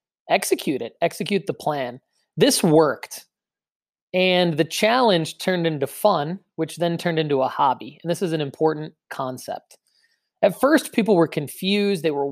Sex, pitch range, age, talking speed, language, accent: male, 145-190 Hz, 20-39, 155 wpm, English, American